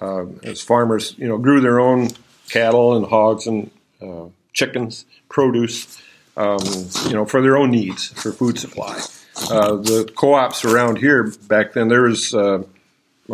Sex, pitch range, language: male, 100-120 Hz, English